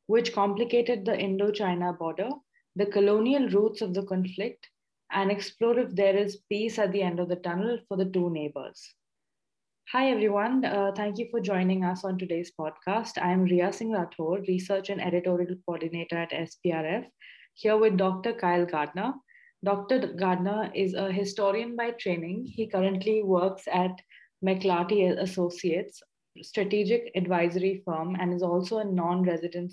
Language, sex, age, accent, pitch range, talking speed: English, female, 20-39, Indian, 175-210 Hz, 150 wpm